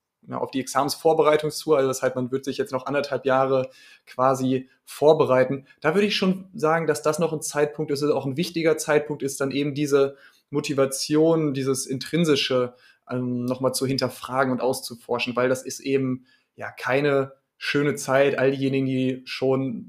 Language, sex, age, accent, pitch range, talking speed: German, male, 20-39, German, 130-150 Hz, 165 wpm